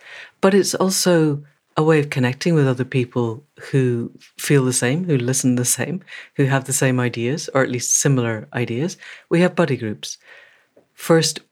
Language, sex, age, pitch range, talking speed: English, female, 60-79, 125-150 Hz, 170 wpm